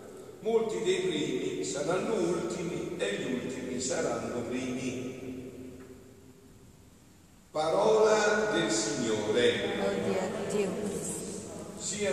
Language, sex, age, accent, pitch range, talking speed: Italian, male, 50-69, native, 130-210 Hz, 70 wpm